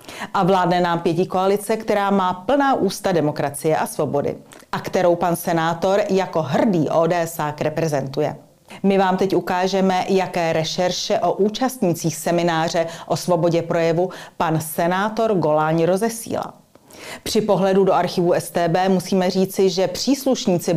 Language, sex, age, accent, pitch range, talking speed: Czech, female, 40-59, native, 170-220 Hz, 130 wpm